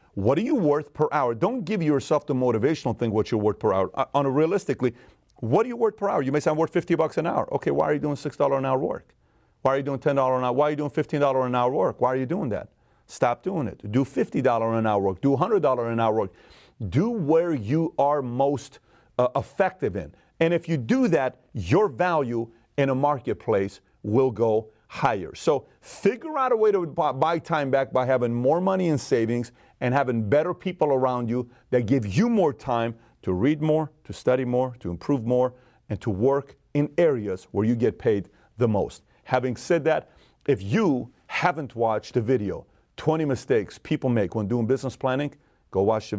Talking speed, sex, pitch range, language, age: 210 wpm, male, 115-150 Hz, English, 40-59